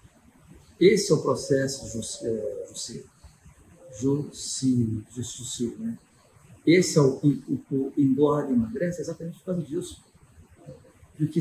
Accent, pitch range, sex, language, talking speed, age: Brazilian, 130-160 Hz, male, Portuguese, 110 wpm, 50-69